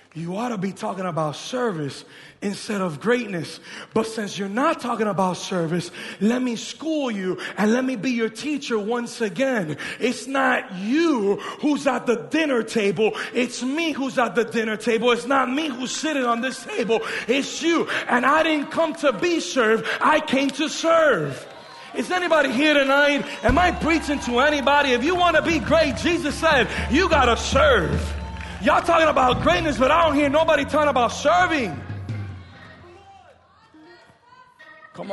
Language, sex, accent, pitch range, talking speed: English, male, American, 200-305 Hz, 170 wpm